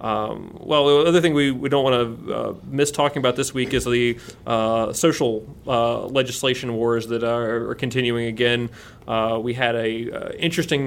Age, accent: 30-49, American